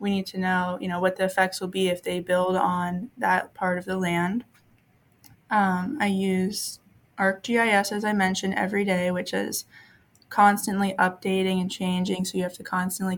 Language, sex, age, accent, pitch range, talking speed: English, female, 20-39, American, 180-200 Hz, 180 wpm